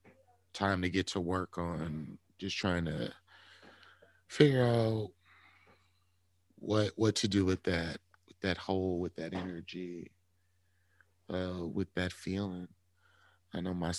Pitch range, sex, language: 90-95 Hz, male, English